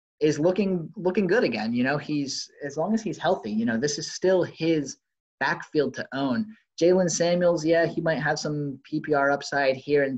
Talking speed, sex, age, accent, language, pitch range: 195 wpm, male, 20-39, American, English, 130-160 Hz